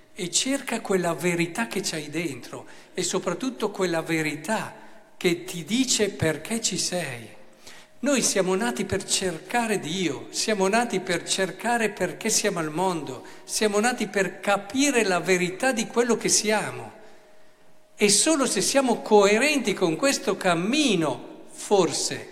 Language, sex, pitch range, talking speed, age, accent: Italian, male, 150-195 Hz, 135 wpm, 50-69, native